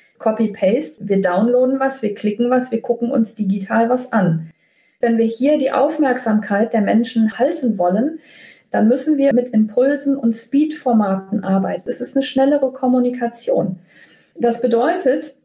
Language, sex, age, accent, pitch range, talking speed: German, female, 40-59, German, 215-255 Hz, 145 wpm